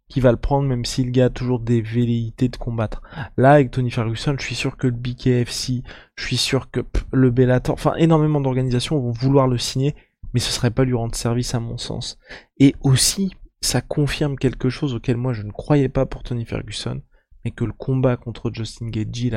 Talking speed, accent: 210 wpm, French